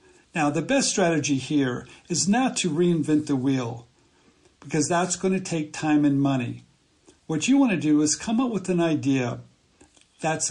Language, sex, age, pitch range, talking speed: English, male, 60-79, 150-195 Hz, 165 wpm